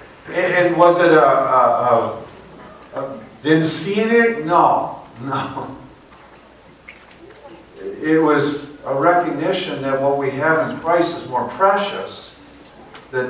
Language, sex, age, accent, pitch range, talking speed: English, male, 50-69, American, 120-145 Hz, 115 wpm